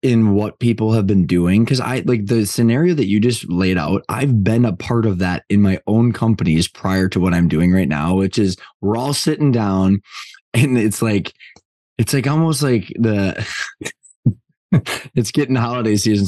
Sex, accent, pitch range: male, American, 100-130 Hz